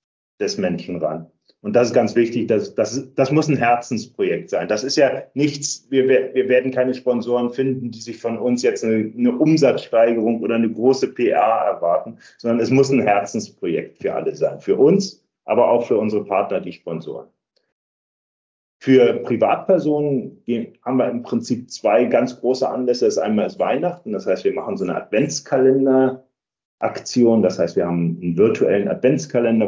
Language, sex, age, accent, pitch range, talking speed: German, male, 30-49, German, 115-140 Hz, 170 wpm